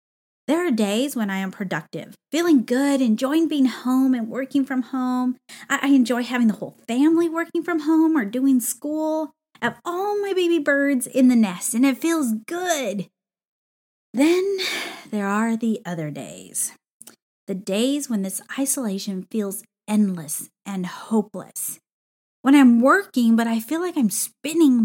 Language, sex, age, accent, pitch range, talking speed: English, female, 30-49, American, 210-265 Hz, 155 wpm